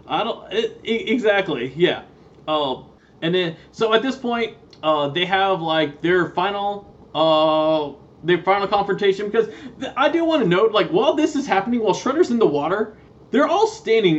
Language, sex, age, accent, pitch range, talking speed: English, male, 20-39, American, 175-255 Hz, 180 wpm